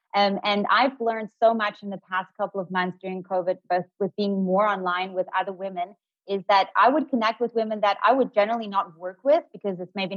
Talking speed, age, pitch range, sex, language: 230 wpm, 30-49, 195-250 Hz, female, English